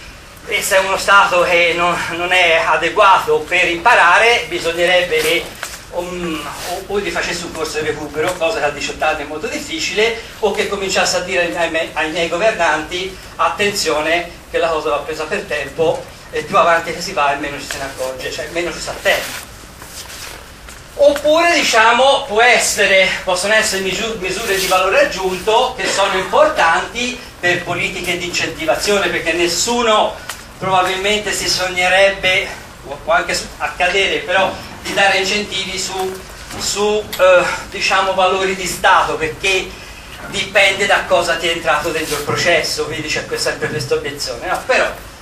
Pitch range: 170-210 Hz